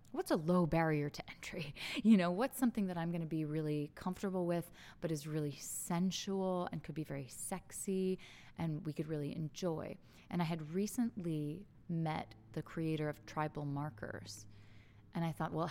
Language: English